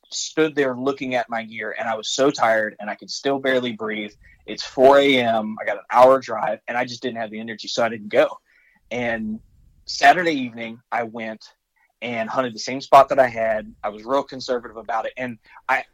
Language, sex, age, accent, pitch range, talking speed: English, male, 20-39, American, 115-150 Hz, 210 wpm